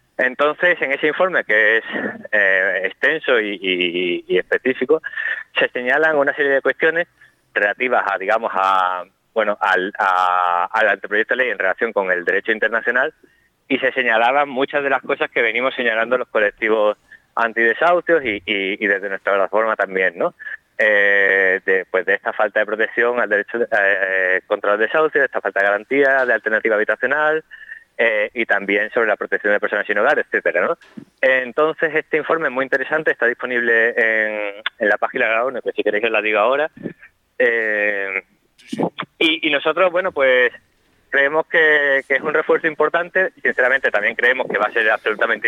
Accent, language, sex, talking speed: Spanish, Spanish, male, 175 wpm